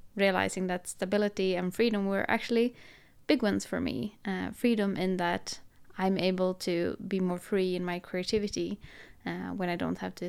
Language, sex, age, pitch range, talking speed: English, female, 20-39, 180-220 Hz, 175 wpm